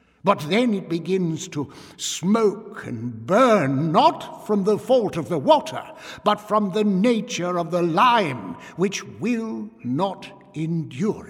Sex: male